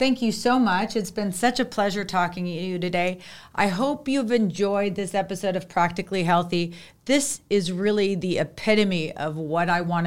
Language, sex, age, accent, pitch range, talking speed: English, female, 40-59, American, 175-205 Hz, 185 wpm